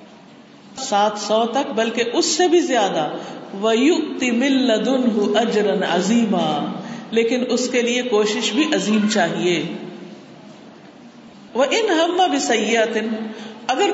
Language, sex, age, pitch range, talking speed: Urdu, female, 50-69, 210-295 Hz, 100 wpm